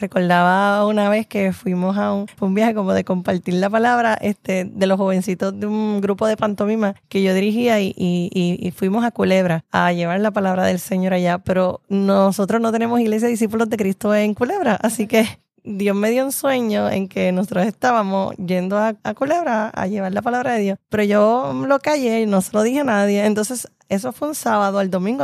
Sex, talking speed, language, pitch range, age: female, 210 wpm, Spanish, 190-240 Hz, 20-39